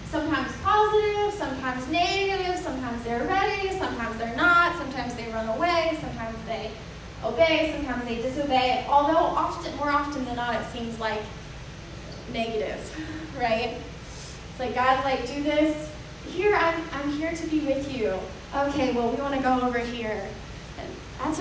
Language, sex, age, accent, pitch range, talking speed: English, female, 10-29, American, 245-315 Hz, 150 wpm